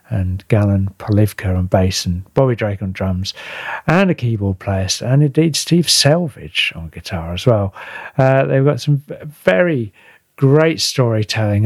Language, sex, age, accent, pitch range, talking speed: English, male, 40-59, British, 95-130 Hz, 150 wpm